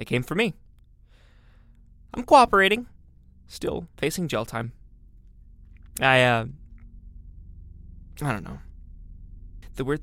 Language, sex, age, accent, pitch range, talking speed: English, male, 20-39, American, 80-120 Hz, 100 wpm